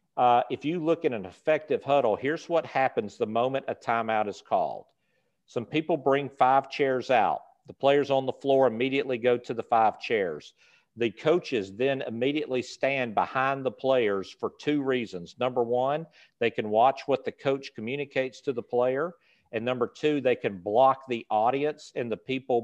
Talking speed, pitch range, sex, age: 180 wpm, 120-140 Hz, male, 50-69